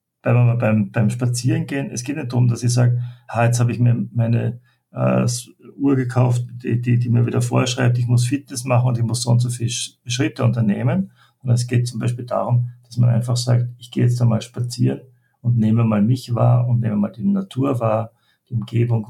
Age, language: 50-69, German